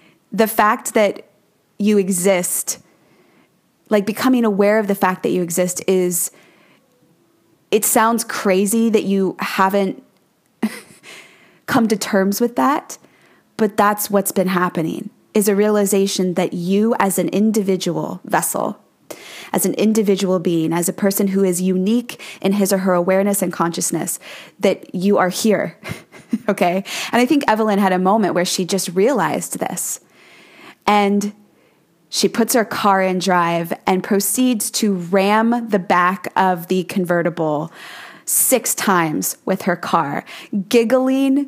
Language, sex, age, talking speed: English, female, 20-39, 140 wpm